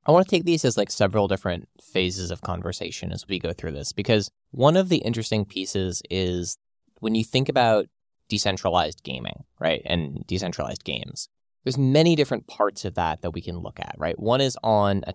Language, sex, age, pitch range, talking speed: English, male, 20-39, 90-115 Hz, 200 wpm